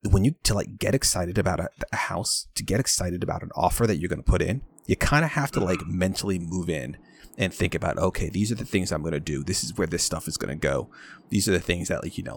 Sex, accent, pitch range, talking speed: male, American, 85-105 Hz, 290 wpm